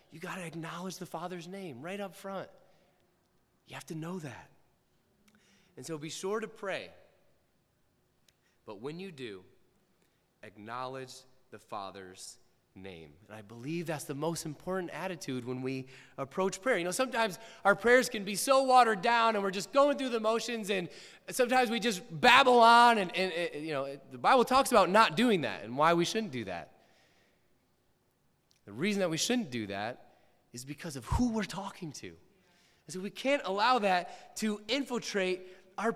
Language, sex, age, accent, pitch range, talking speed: English, male, 30-49, American, 145-215 Hz, 175 wpm